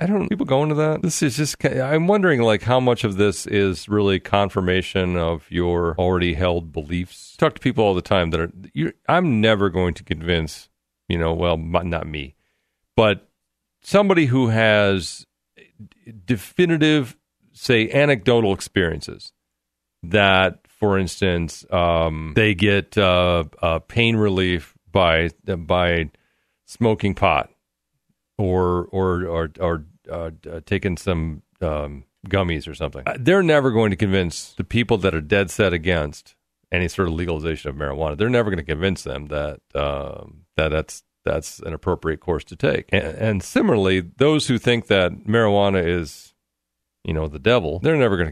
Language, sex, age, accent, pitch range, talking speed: English, male, 40-59, American, 80-110 Hz, 165 wpm